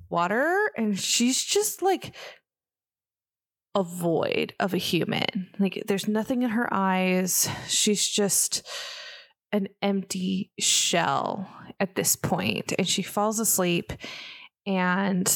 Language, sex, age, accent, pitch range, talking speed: English, female, 20-39, American, 180-205 Hz, 115 wpm